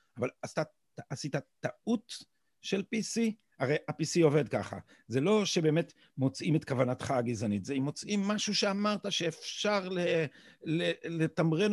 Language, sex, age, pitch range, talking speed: Hebrew, male, 50-69, 120-170 Hz, 125 wpm